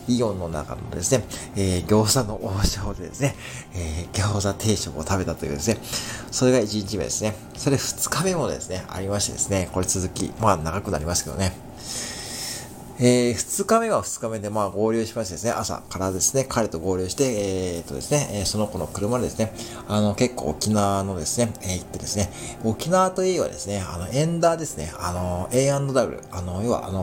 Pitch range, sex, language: 90-125 Hz, male, Japanese